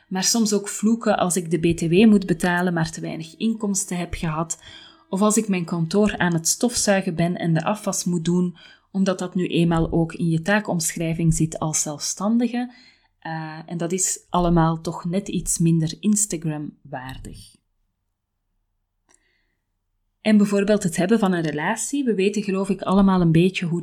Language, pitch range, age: Dutch, 165-200 Hz, 30-49